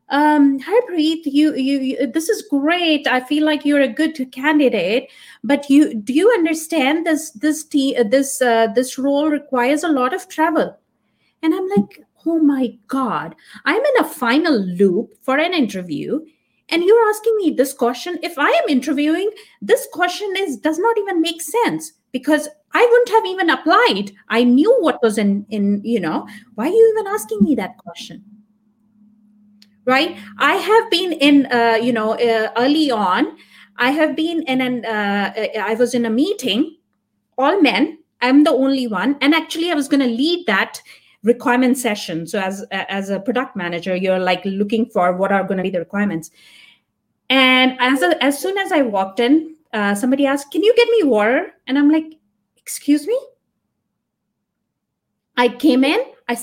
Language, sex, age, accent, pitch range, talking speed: English, female, 30-49, Indian, 230-320 Hz, 180 wpm